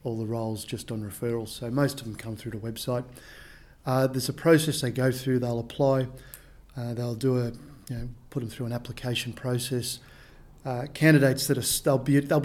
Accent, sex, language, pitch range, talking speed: Australian, male, English, 120-140 Hz, 195 wpm